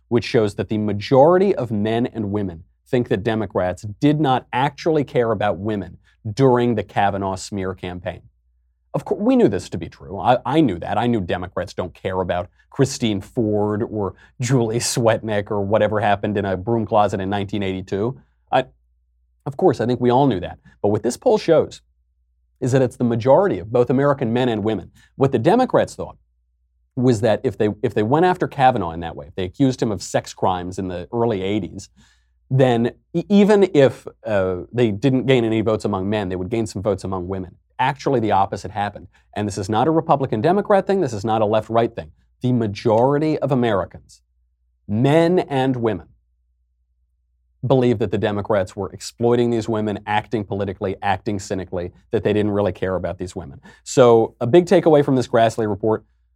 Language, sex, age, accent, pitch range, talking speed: English, male, 40-59, American, 95-125 Hz, 190 wpm